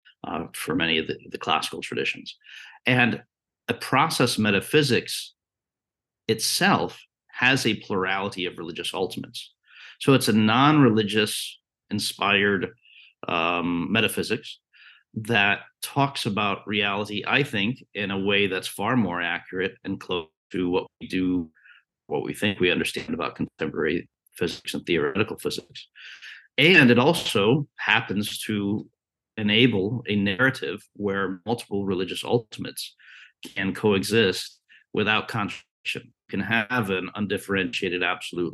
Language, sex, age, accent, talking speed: English, male, 50-69, American, 120 wpm